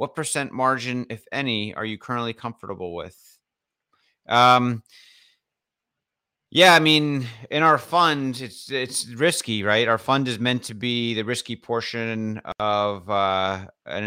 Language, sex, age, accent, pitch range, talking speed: English, male, 30-49, American, 100-120 Hz, 140 wpm